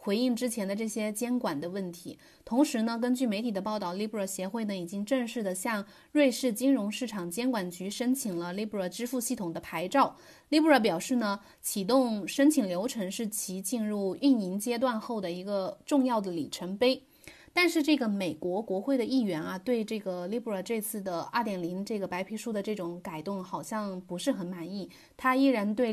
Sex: female